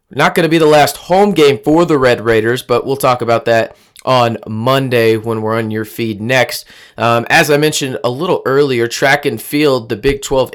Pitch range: 120-145 Hz